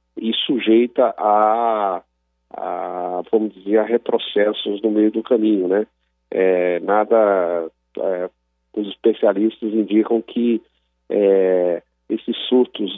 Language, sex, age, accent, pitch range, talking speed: Portuguese, male, 50-69, Brazilian, 90-110 Hz, 105 wpm